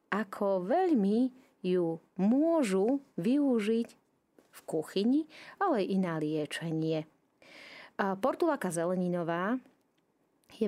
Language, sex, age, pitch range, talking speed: Slovak, female, 30-49, 165-225 Hz, 85 wpm